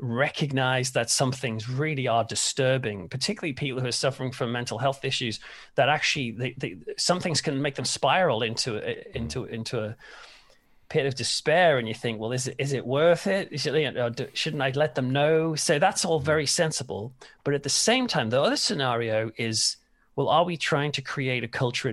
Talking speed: 190 wpm